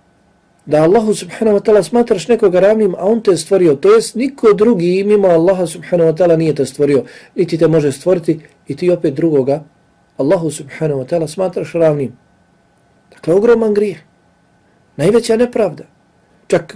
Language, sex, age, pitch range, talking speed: English, male, 40-59, 150-195 Hz, 160 wpm